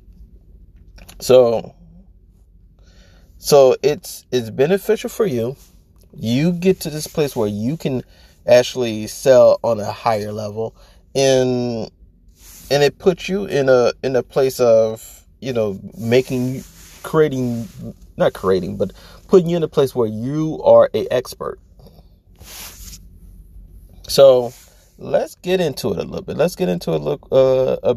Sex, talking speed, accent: male, 135 wpm, American